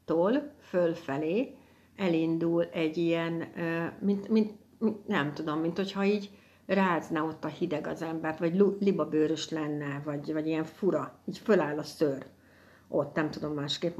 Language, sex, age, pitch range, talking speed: Hungarian, female, 60-79, 155-190 Hz, 140 wpm